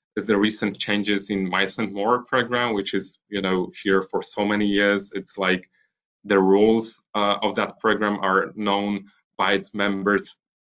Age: 20-39